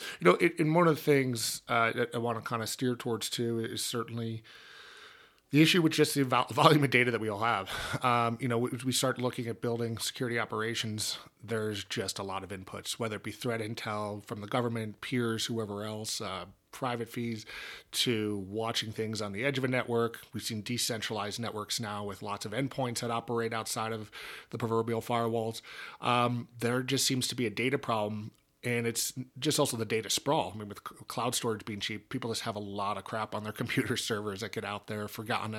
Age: 30-49